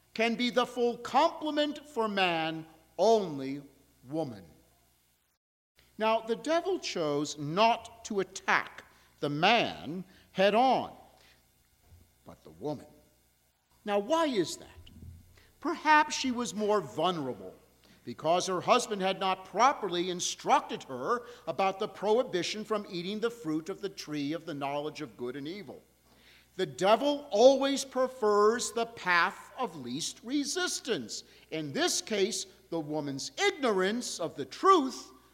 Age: 50-69